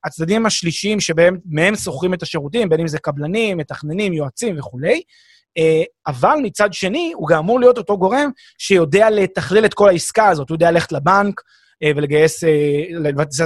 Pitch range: 155-220 Hz